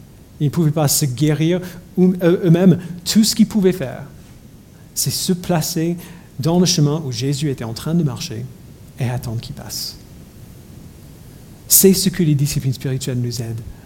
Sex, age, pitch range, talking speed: male, 40-59, 140-170 Hz, 160 wpm